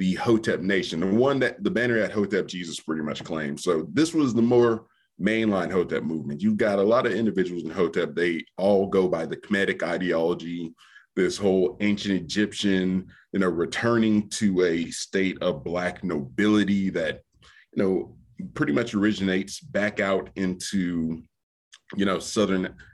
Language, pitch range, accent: English, 90-105 Hz, American